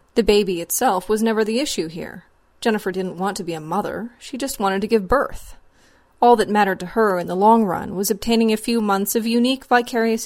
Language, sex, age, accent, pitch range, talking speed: English, female, 30-49, American, 190-225 Hz, 220 wpm